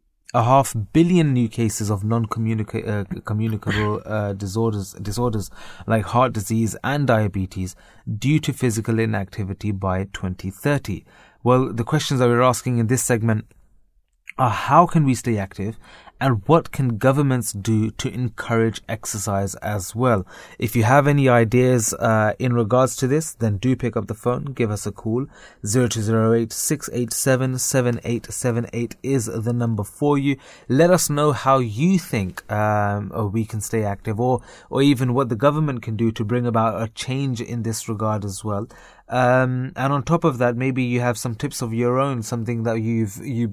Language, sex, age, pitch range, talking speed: English, male, 20-39, 105-130 Hz, 180 wpm